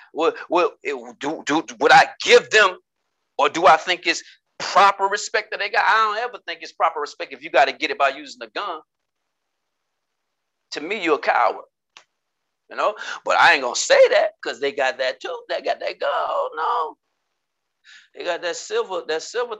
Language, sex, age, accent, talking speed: English, male, 40-59, American, 200 wpm